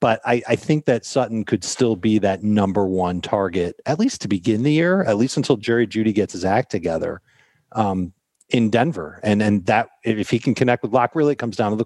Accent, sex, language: American, male, English